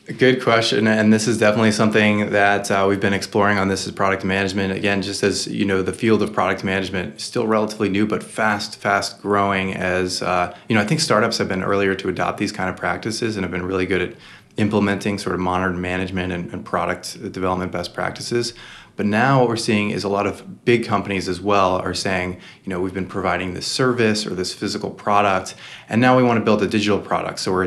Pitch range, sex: 95-105 Hz, male